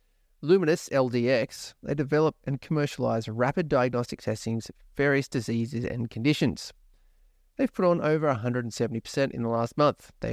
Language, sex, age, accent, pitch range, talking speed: English, male, 30-49, Australian, 115-150 Hz, 140 wpm